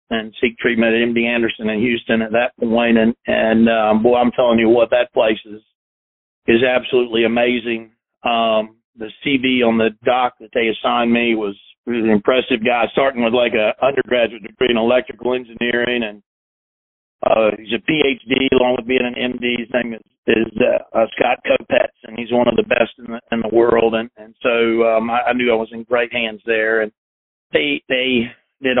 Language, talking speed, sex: English, 200 wpm, male